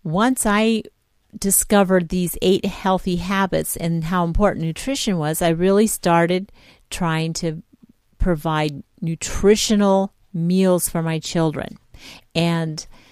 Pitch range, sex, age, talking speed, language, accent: 160-190 Hz, female, 50-69, 110 wpm, English, American